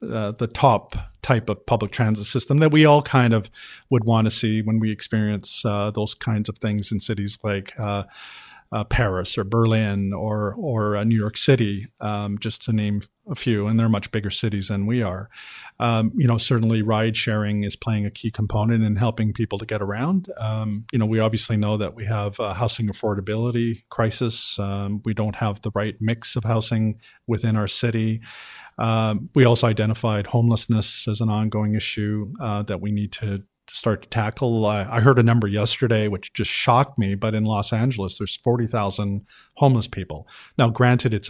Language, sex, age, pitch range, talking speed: English, male, 50-69, 105-120 Hz, 190 wpm